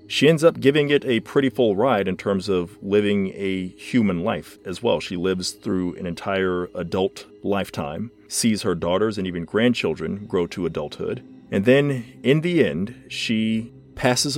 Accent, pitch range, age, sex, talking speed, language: American, 90-130 Hz, 40-59, male, 170 wpm, English